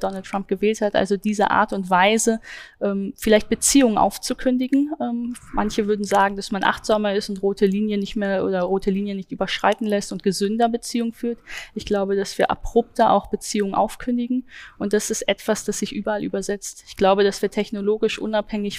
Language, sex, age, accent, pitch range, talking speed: German, female, 10-29, German, 195-215 Hz, 180 wpm